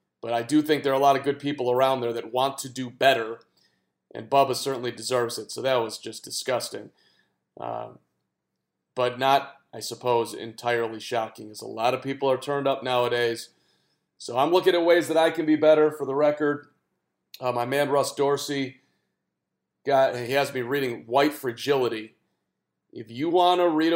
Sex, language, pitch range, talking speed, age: male, English, 120-155 Hz, 185 wpm, 40-59